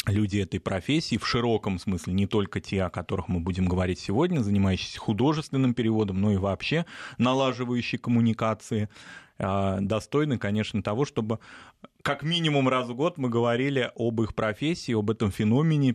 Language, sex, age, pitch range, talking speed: Russian, male, 20-39, 105-125 Hz, 150 wpm